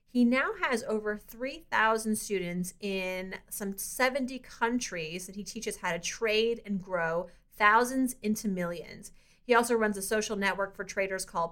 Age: 30-49